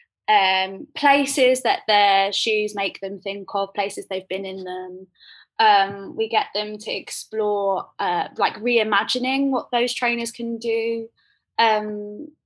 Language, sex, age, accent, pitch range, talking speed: English, female, 20-39, British, 210-285 Hz, 140 wpm